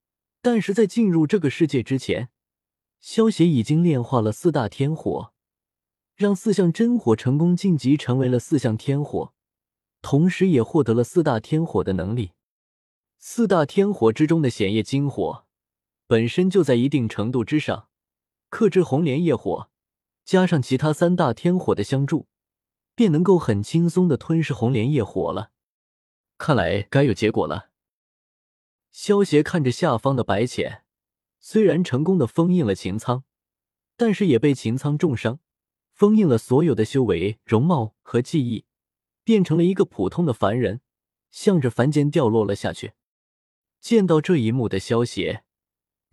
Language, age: Chinese, 20-39